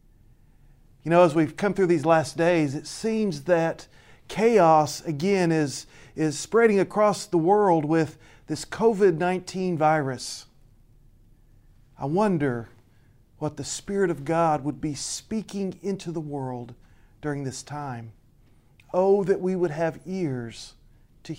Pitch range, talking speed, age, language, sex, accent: 130-190 Hz, 130 wpm, 40-59, English, male, American